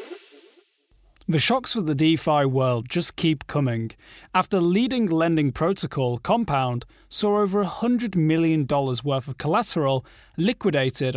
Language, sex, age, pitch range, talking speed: English, male, 30-49, 130-185 Hz, 120 wpm